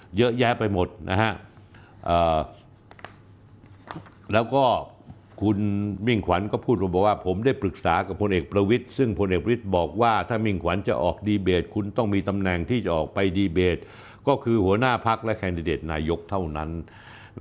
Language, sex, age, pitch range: Thai, male, 60-79, 85-110 Hz